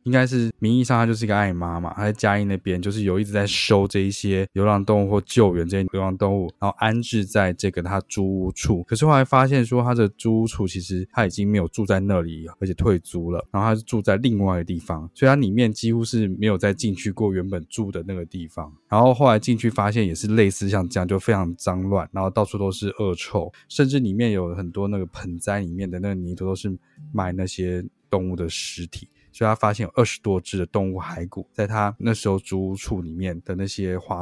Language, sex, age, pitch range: Chinese, male, 20-39, 90-110 Hz